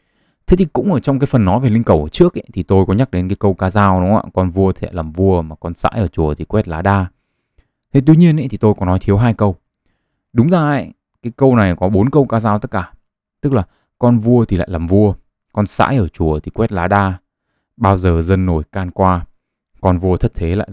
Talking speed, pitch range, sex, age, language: 265 wpm, 90-115 Hz, male, 20-39, Vietnamese